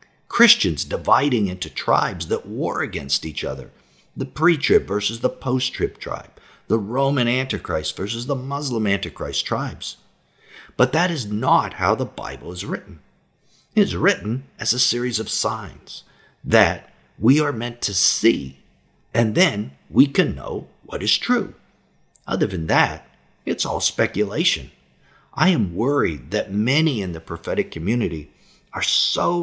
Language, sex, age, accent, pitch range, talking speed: English, male, 50-69, American, 95-140 Hz, 145 wpm